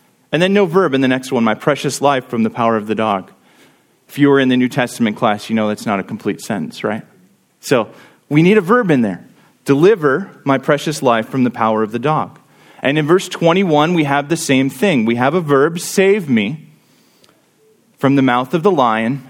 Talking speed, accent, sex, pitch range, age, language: 220 wpm, American, male, 130-190 Hz, 30-49, English